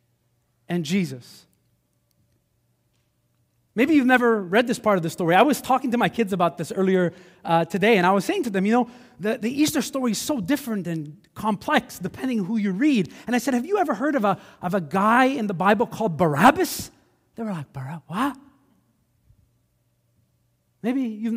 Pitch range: 165-245 Hz